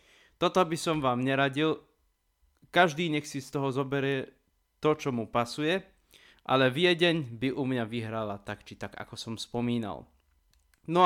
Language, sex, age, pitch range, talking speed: Slovak, male, 20-39, 120-150 Hz, 150 wpm